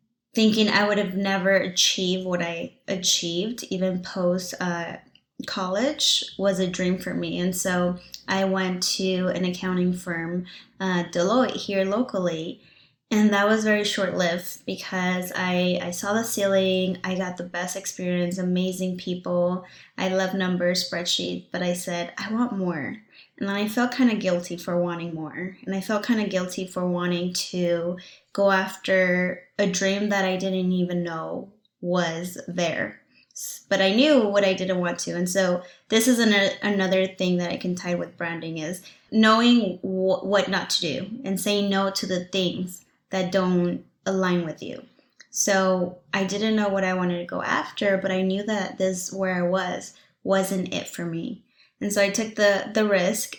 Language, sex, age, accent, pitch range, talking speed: English, female, 20-39, American, 180-200 Hz, 175 wpm